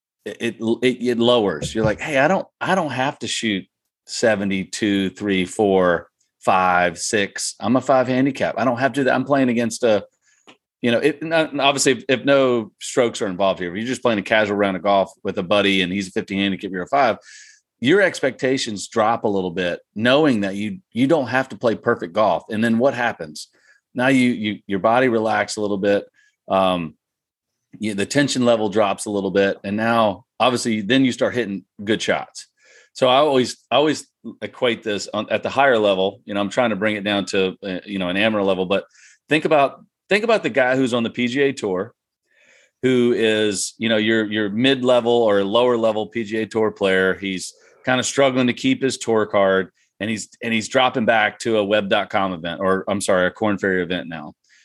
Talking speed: 210 wpm